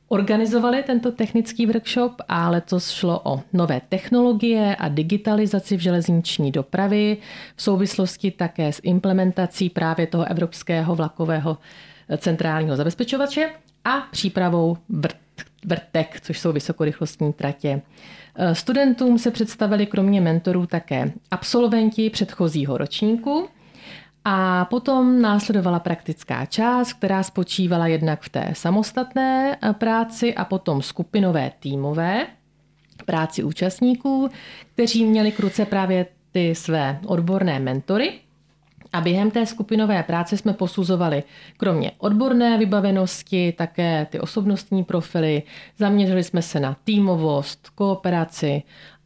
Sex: female